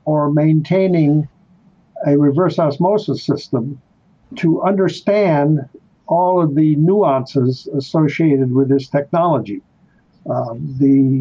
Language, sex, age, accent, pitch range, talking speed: English, male, 60-79, American, 140-170 Hz, 95 wpm